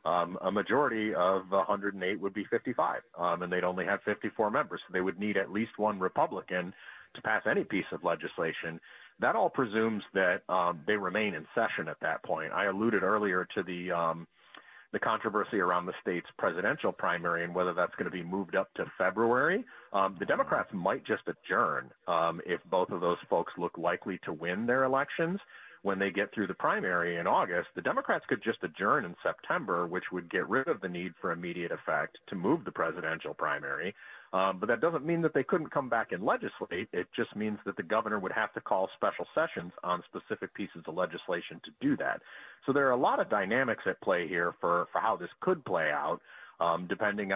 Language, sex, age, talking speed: English, male, 40-59, 205 wpm